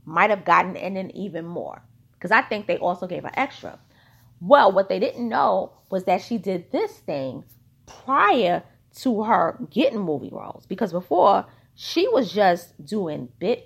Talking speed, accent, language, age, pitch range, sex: 170 wpm, American, English, 30-49, 160-225 Hz, female